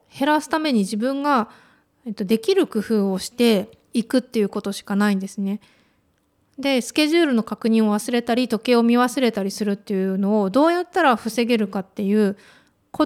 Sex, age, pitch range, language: female, 20-39, 205-280 Hz, Japanese